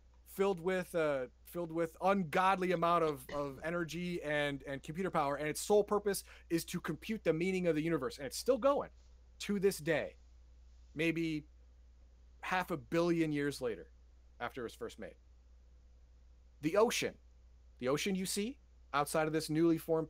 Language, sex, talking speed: English, male, 165 wpm